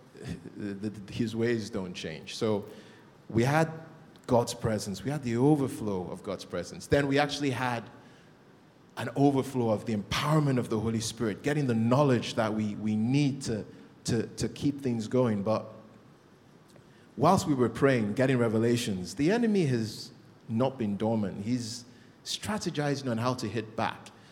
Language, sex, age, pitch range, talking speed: English, male, 30-49, 110-135 Hz, 155 wpm